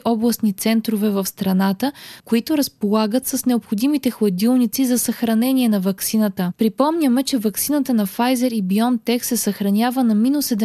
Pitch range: 210-260 Hz